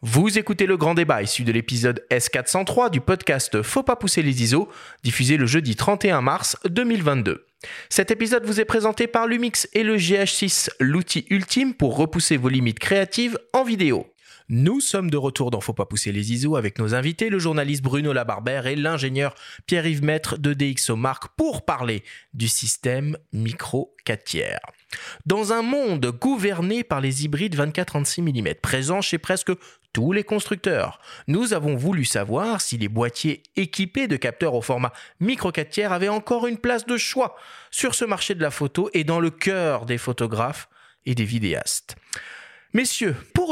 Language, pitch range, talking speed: French, 125-200 Hz, 170 wpm